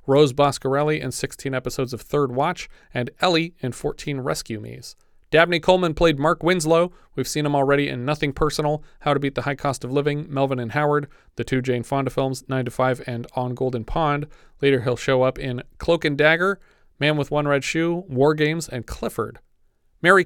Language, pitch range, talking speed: English, 130-155 Hz, 200 wpm